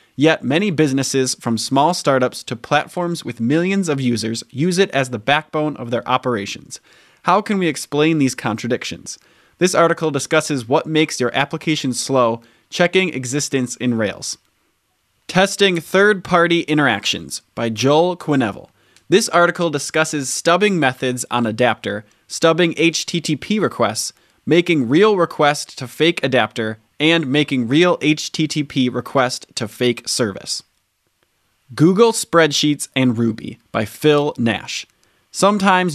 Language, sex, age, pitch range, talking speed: English, male, 20-39, 125-165 Hz, 125 wpm